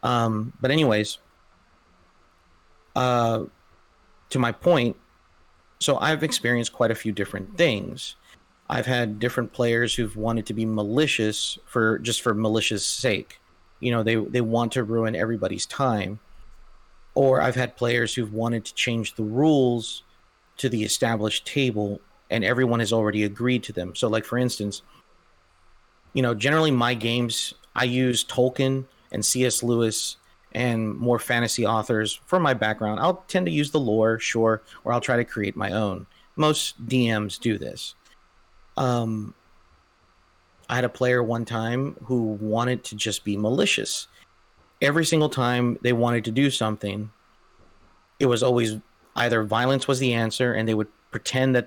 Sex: male